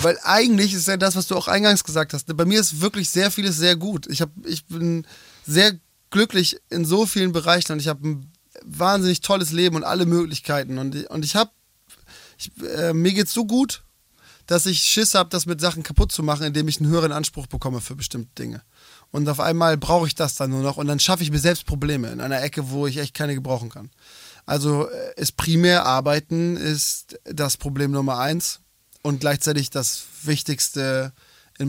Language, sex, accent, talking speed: German, male, German, 200 wpm